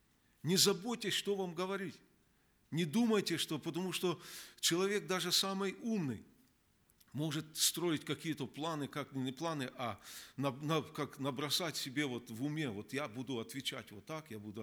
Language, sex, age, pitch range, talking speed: Russian, male, 50-69, 125-165 Hz, 150 wpm